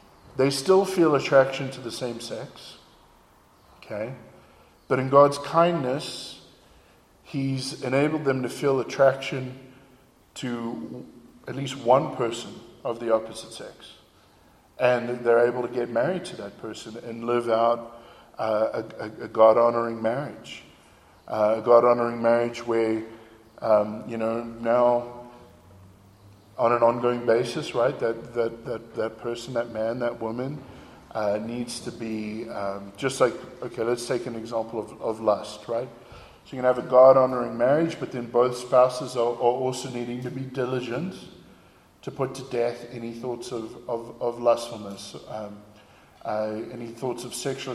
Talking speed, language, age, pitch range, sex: 150 wpm, English, 50-69, 115-130 Hz, male